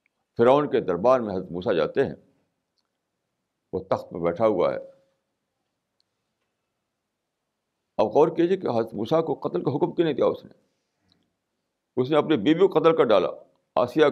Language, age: Urdu, 60-79